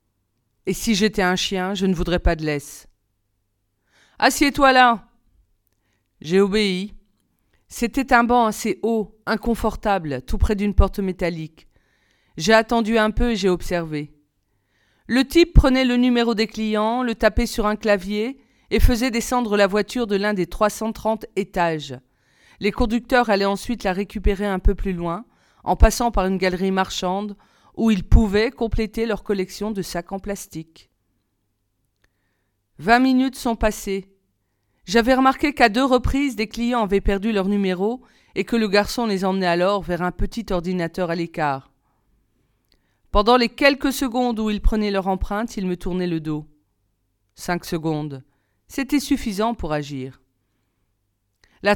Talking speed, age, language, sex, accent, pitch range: 150 wpm, 40-59, French, female, French, 150-225 Hz